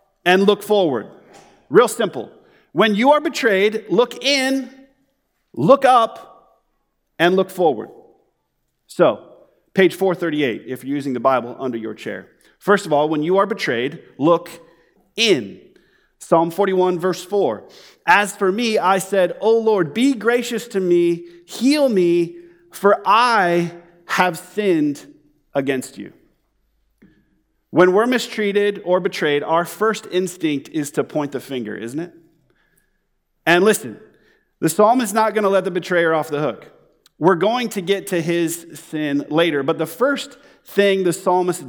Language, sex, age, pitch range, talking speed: English, male, 40-59, 160-220 Hz, 145 wpm